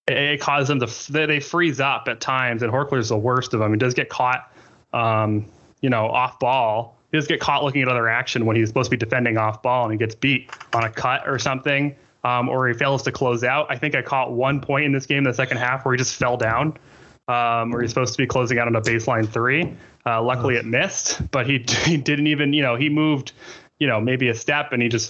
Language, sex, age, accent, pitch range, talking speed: English, male, 20-39, American, 120-150 Hz, 255 wpm